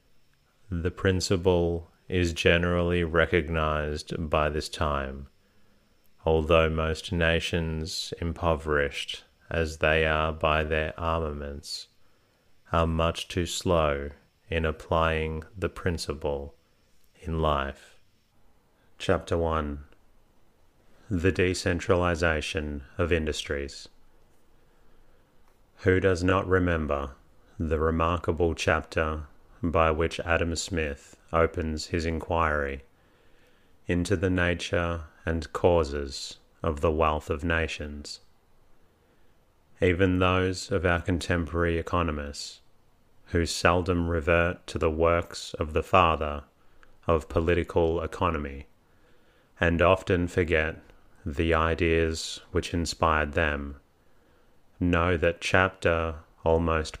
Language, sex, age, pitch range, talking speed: English, male, 30-49, 80-85 Hz, 95 wpm